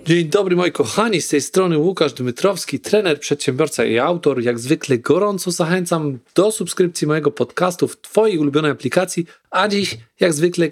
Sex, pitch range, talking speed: male, 135-175 Hz, 160 wpm